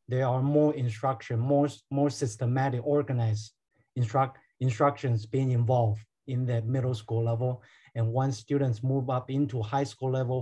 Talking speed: 150 wpm